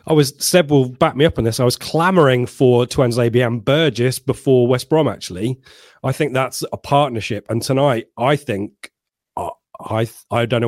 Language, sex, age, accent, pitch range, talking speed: English, male, 30-49, British, 115-135 Hz, 190 wpm